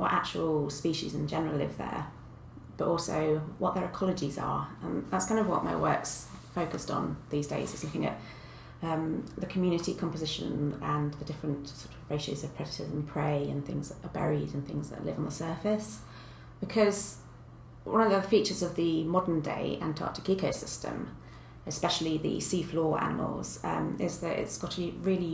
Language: English